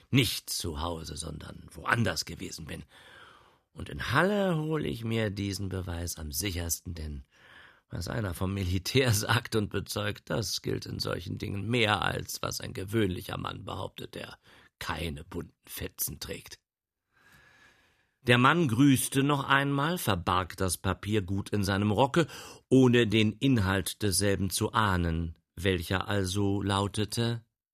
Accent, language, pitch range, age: German, German, 95-155 Hz, 50-69